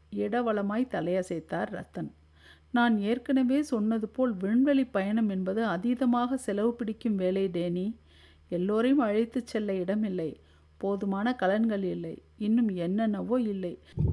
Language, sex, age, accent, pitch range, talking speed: Tamil, female, 50-69, native, 190-245 Hz, 100 wpm